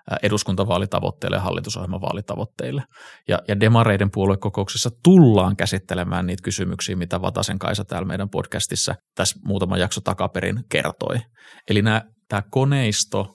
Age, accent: 30-49, native